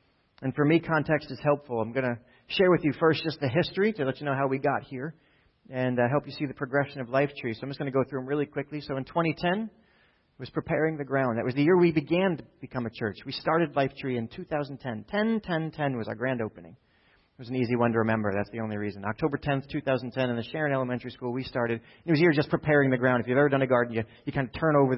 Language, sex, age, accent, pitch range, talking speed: English, male, 40-59, American, 125-155 Hz, 275 wpm